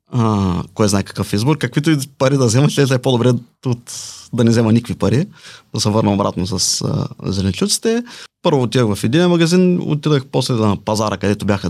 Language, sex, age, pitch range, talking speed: Bulgarian, male, 20-39, 105-140 Hz, 195 wpm